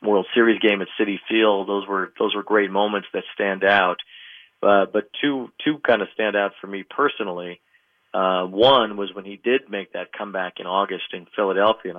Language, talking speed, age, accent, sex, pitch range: English, 200 wpm, 40-59, American, male, 95-105 Hz